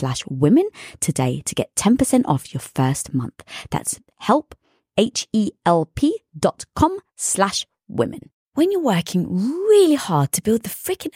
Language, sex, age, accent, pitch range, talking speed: English, female, 20-39, British, 185-290 Hz, 120 wpm